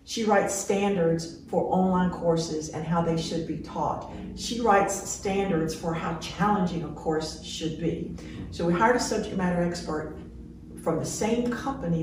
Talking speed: 165 wpm